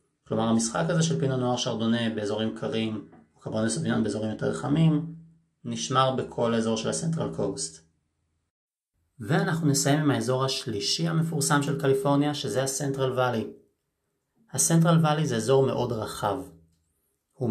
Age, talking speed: 30-49, 125 wpm